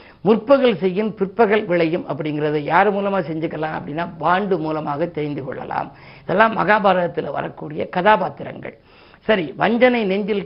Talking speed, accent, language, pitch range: 115 wpm, native, Tamil, 165-200 Hz